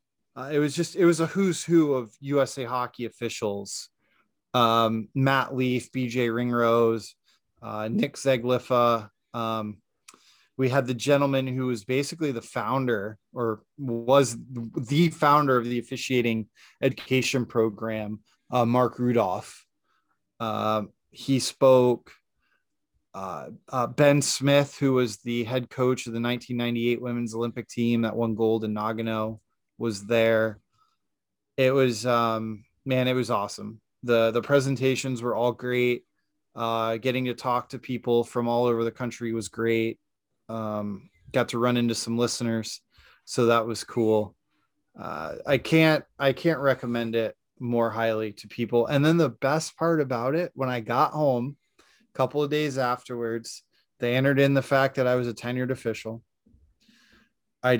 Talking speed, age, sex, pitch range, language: 150 wpm, 20-39, male, 115-130 Hz, English